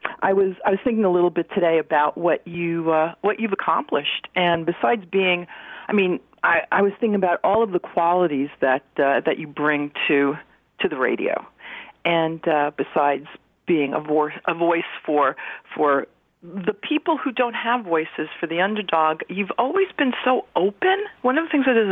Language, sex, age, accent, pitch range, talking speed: English, female, 50-69, American, 165-215 Hz, 190 wpm